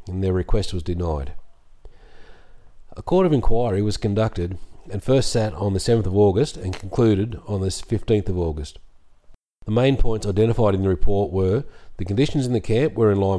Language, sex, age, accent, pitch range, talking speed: English, male, 40-59, Australian, 95-115 Hz, 190 wpm